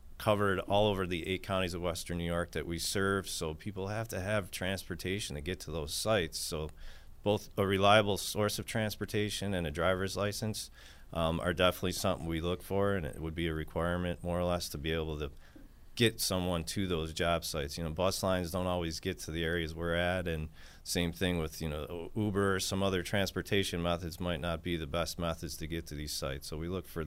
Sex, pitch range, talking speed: male, 80-100 Hz, 220 wpm